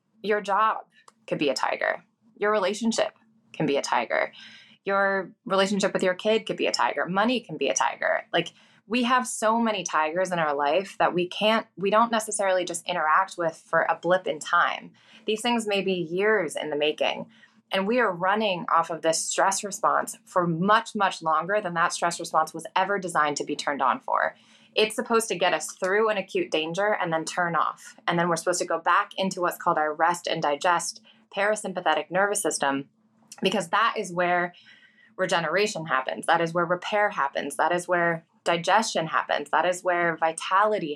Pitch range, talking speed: 170-215 Hz, 195 wpm